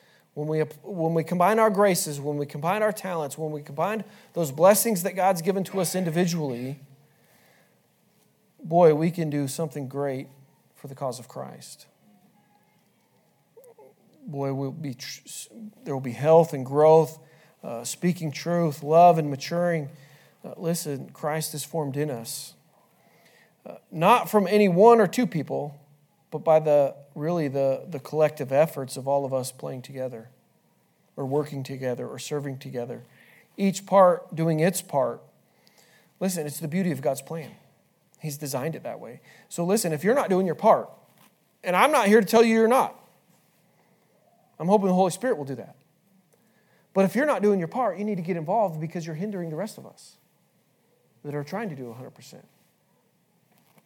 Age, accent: 40-59, American